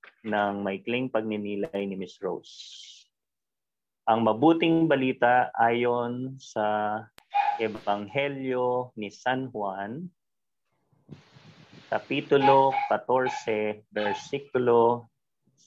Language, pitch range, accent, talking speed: Filipino, 110-150 Hz, native, 75 wpm